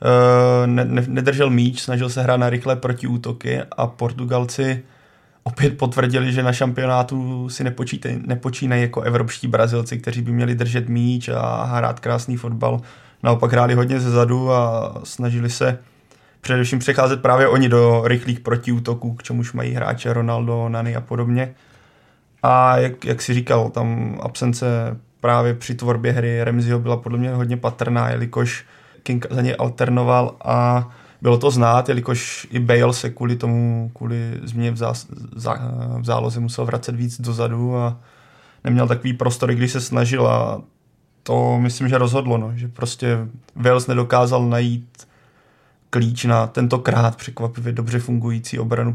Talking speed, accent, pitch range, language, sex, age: 145 wpm, native, 120-125 Hz, Czech, male, 20-39